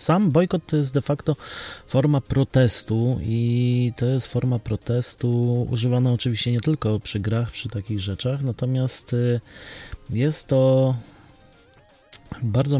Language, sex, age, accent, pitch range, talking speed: Polish, male, 30-49, native, 115-130 Hz, 120 wpm